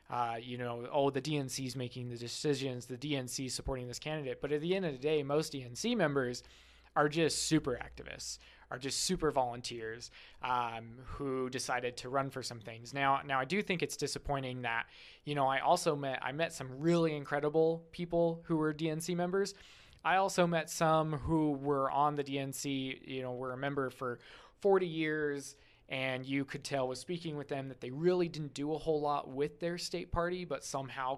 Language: English